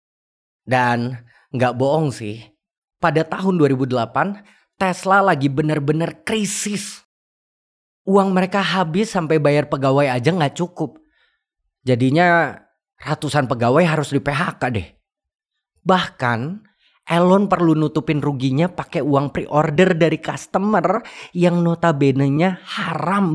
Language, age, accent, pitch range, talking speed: Indonesian, 30-49, native, 125-180 Hz, 105 wpm